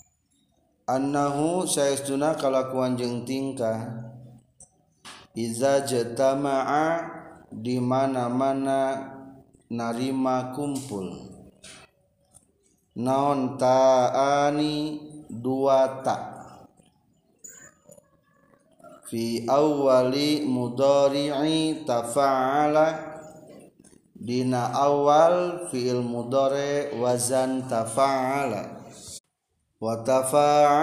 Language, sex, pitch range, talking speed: Indonesian, male, 120-145 Hz, 45 wpm